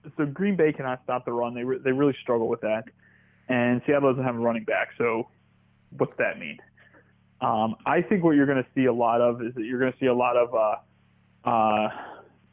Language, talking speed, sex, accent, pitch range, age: English, 225 wpm, male, American, 120-140 Hz, 20-39